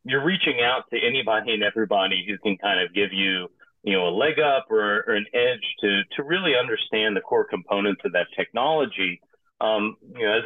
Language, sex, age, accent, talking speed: English, male, 40-59, American, 205 wpm